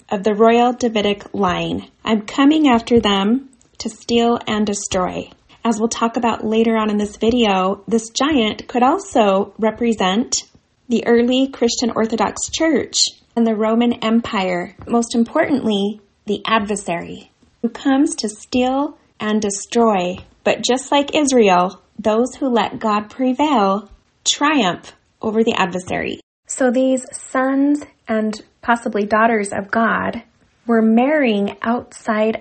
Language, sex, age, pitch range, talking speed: English, female, 20-39, 210-250 Hz, 130 wpm